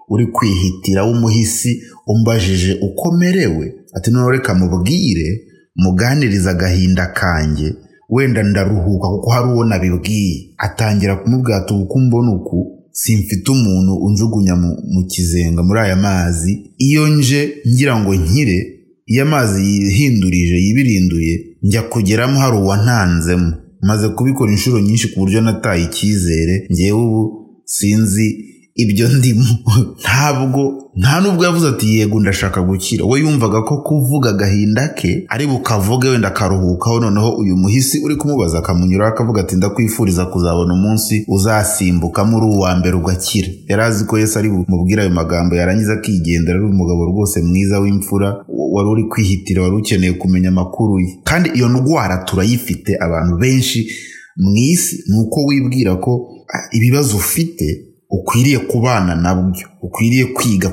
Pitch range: 95-120 Hz